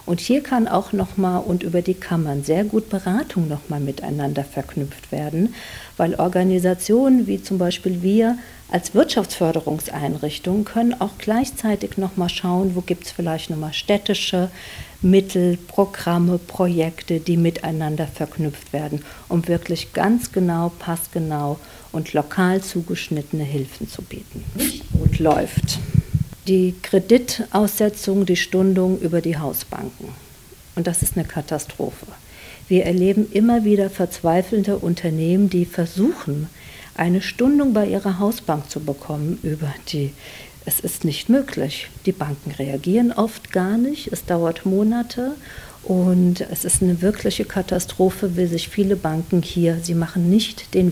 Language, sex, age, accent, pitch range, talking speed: German, female, 50-69, German, 155-200 Hz, 135 wpm